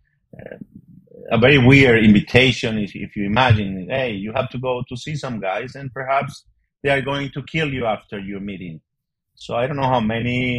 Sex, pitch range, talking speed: male, 105-130 Hz, 195 wpm